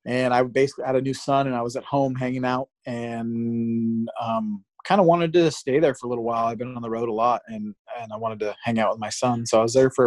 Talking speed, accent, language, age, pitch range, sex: 280 wpm, American, English, 30-49, 120-140 Hz, male